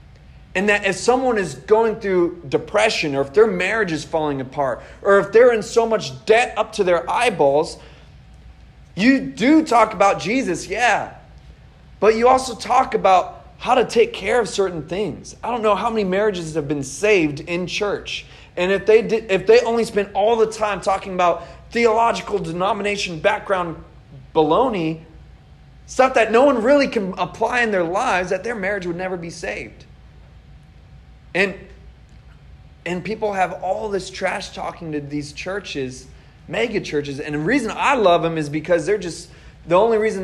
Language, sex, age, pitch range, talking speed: English, male, 20-39, 165-220 Hz, 170 wpm